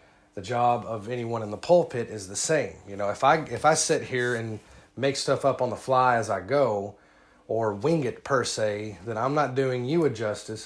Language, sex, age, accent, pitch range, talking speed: English, male, 30-49, American, 110-140 Hz, 225 wpm